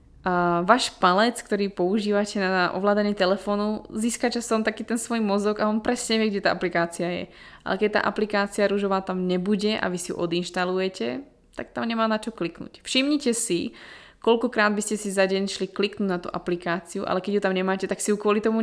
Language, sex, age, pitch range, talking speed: Slovak, female, 20-39, 175-210 Hz, 200 wpm